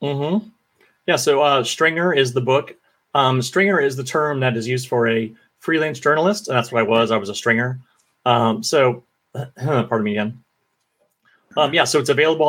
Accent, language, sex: American, English, male